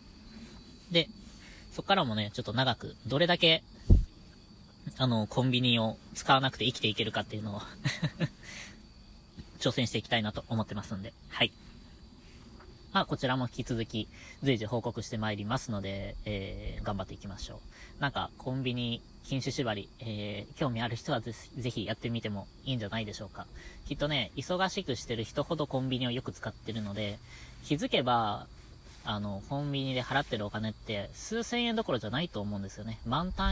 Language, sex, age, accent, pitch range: Japanese, female, 20-39, native, 105-135 Hz